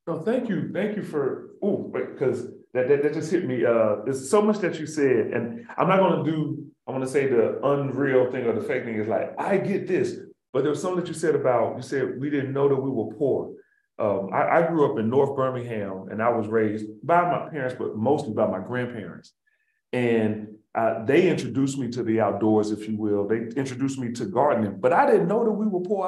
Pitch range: 120-165 Hz